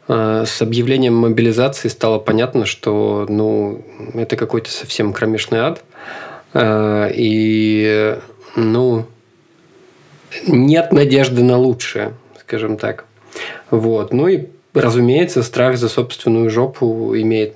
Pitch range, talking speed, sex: 110-130 Hz, 100 wpm, male